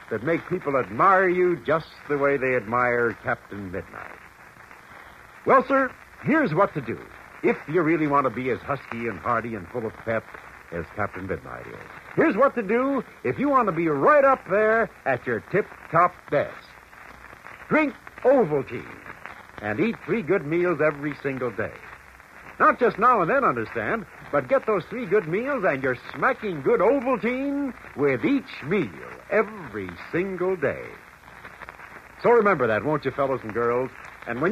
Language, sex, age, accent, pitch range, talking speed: English, male, 70-89, American, 140-220 Hz, 165 wpm